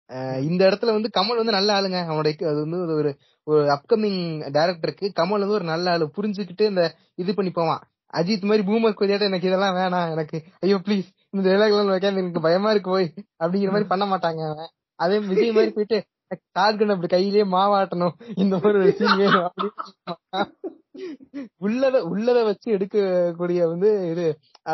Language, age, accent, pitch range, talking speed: Tamil, 20-39, native, 160-205 Hz, 135 wpm